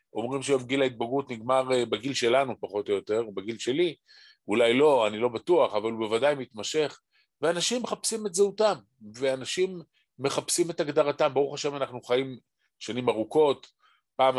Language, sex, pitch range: Hebrew, male, 125-180 Hz